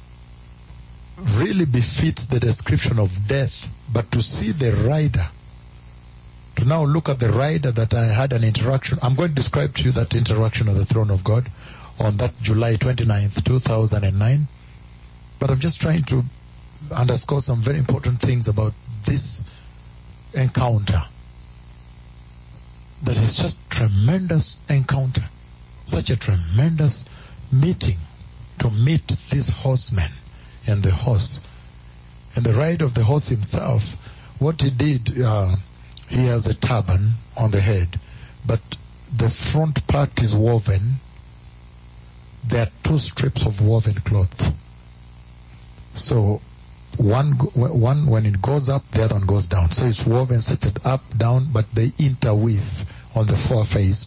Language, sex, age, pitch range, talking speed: English, male, 60-79, 95-125 Hz, 140 wpm